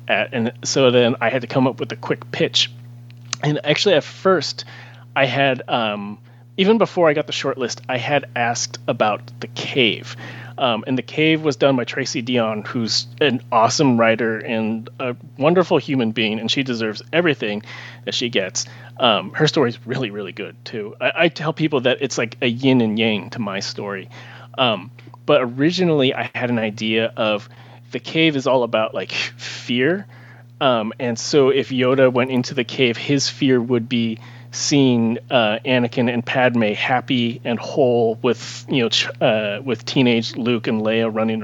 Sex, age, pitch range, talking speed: male, 30-49, 115-135 Hz, 180 wpm